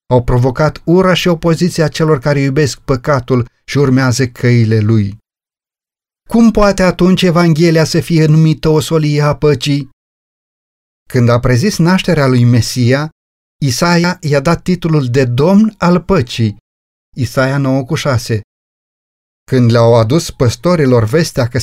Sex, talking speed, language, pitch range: male, 130 wpm, Romanian, 125-165 Hz